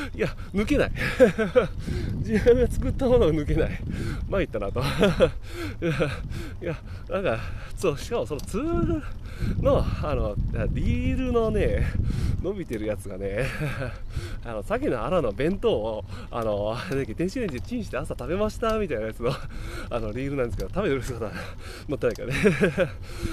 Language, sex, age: Japanese, male, 20-39